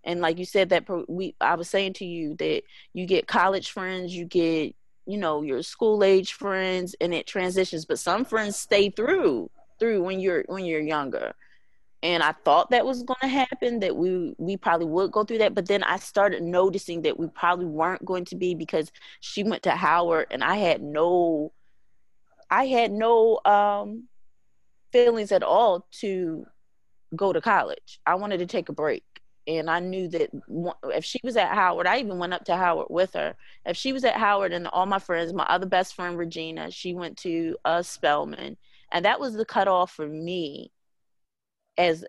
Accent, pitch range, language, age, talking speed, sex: American, 170-205 Hz, English, 20-39, 190 wpm, female